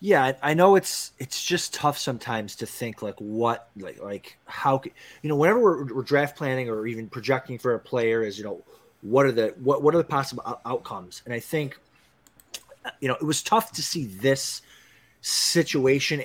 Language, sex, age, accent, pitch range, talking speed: English, male, 30-49, American, 125-150 Hz, 195 wpm